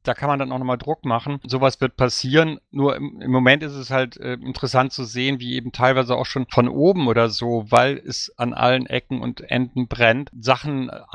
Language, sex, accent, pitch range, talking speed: German, male, German, 125-135 Hz, 215 wpm